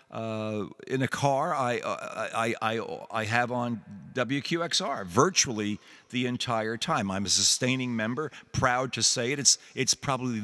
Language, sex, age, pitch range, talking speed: English, male, 50-69, 110-140 Hz, 155 wpm